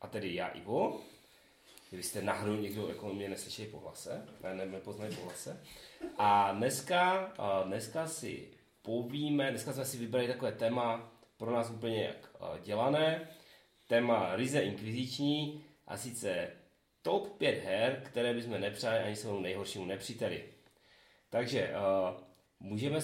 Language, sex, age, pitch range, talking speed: Czech, male, 30-49, 105-135 Hz, 130 wpm